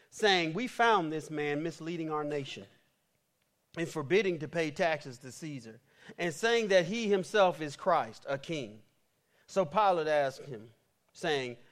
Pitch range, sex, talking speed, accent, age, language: 150-200 Hz, male, 150 wpm, American, 40-59, English